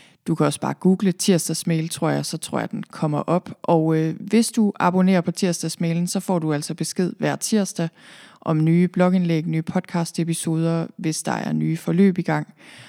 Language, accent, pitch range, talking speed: Danish, native, 160-195 Hz, 185 wpm